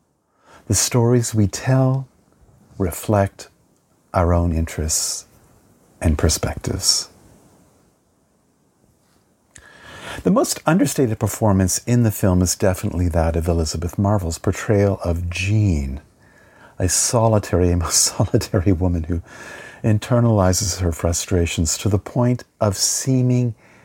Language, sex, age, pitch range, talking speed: English, male, 50-69, 90-125 Hz, 105 wpm